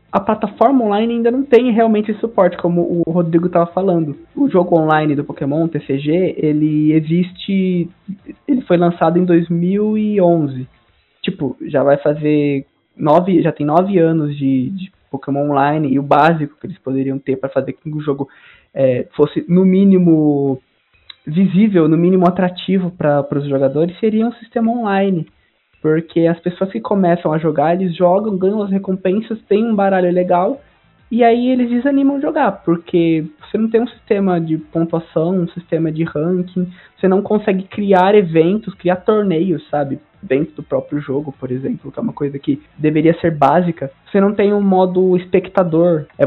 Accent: Brazilian